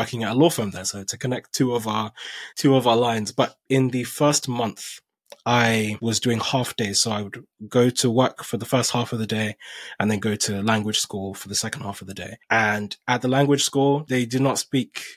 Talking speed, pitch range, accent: 240 wpm, 110-135 Hz, British